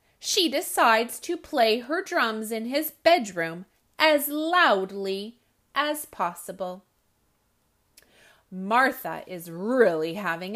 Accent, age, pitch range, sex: American, 30-49, 200-300 Hz, female